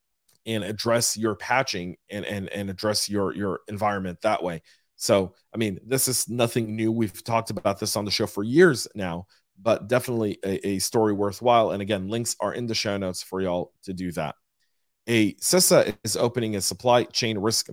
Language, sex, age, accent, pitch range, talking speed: English, male, 40-59, American, 100-115 Hz, 195 wpm